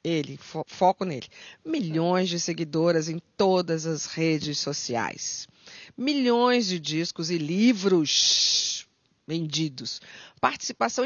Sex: female